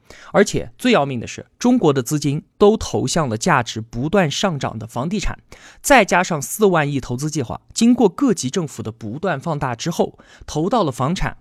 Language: Chinese